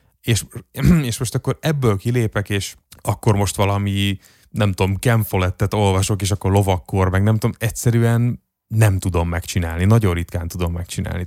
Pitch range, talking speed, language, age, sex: 95-115 Hz, 155 wpm, Hungarian, 30-49, male